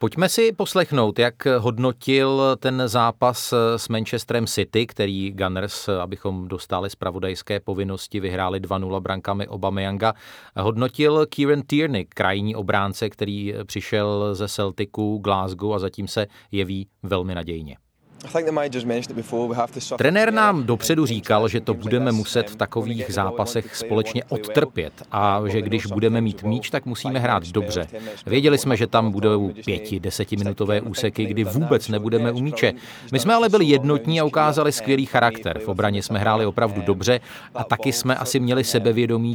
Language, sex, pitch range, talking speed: Czech, male, 100-125 Hz, 140 wpm